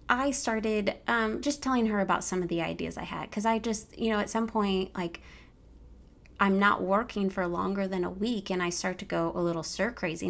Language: English